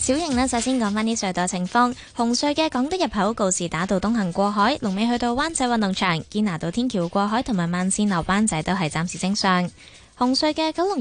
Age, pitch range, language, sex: 20-39, 175-245 Hz, Chinese, female